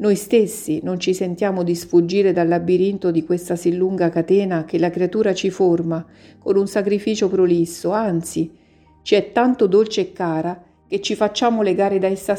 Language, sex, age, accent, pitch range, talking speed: Italian, female, 50-69, native, 165-200 Hz, 175 wpm